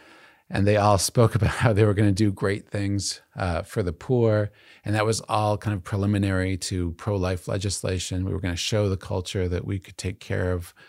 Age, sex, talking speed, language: 40-59, male, 220 wpm, English